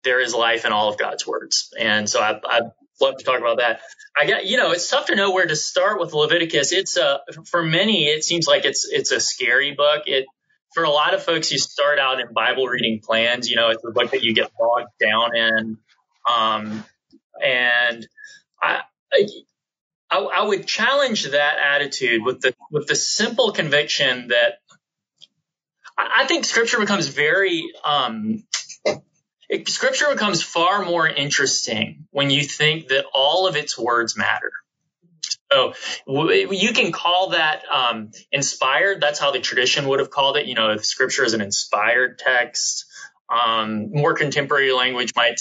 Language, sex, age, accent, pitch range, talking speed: English, male, 20-39, American, 120-185 Hz, 175 wpm